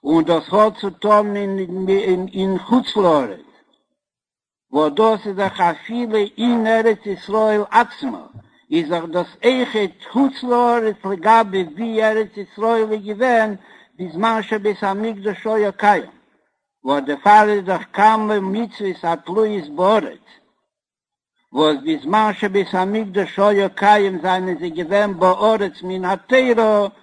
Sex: male